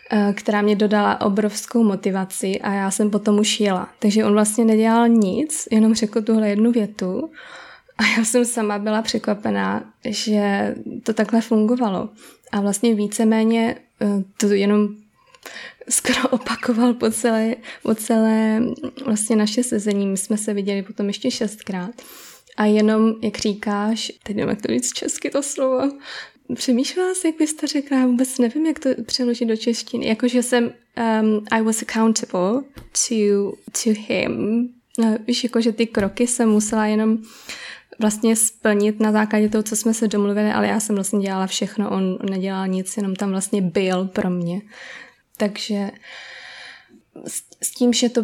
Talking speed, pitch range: 150 wpm, 210-245 Hz